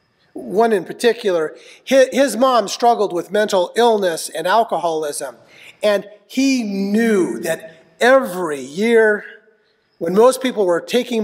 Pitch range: 170-230 Hz